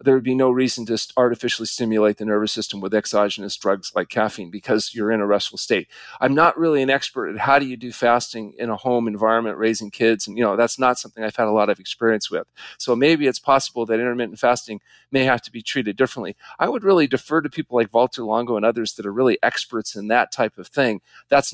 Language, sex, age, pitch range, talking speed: English, male, 40-59, 115-140 Hz, 240 wpm